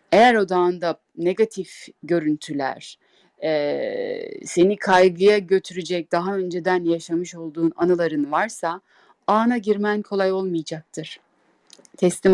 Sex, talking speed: female, 90 wpm